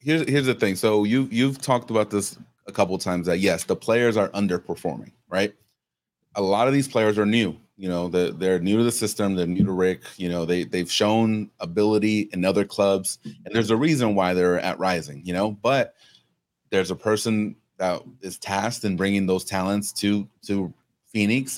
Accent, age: American, 30-49